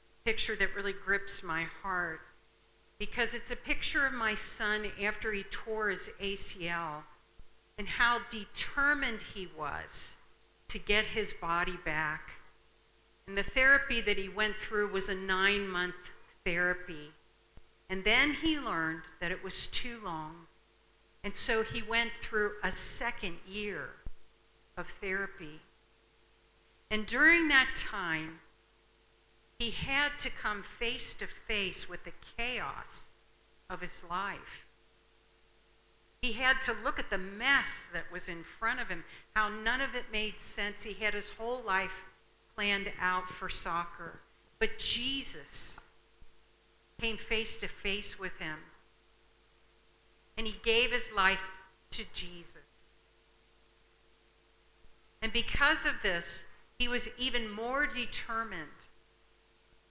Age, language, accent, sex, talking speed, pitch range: 60-79, English, American, female, 125 wpm, 150-225 Hz